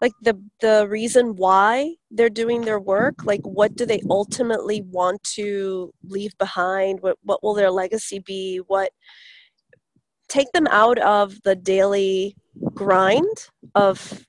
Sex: female